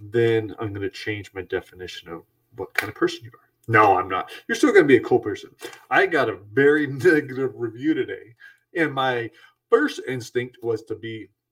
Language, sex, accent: English, male, American